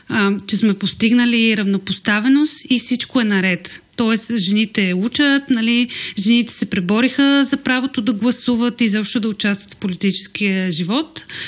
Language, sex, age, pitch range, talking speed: Bulgarian, female, 30-49, 195-235 Hz, 135 wpm